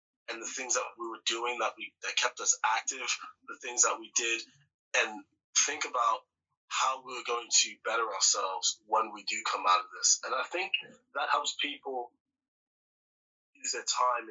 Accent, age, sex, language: American, 20-39, male, English